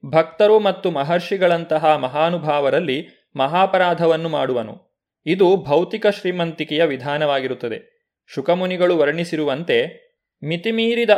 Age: 30-49